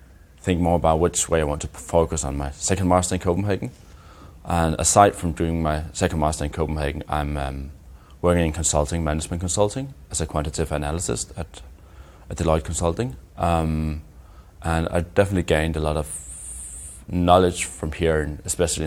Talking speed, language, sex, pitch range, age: 160 wpm, English, male, 75-85 Hz, 20-39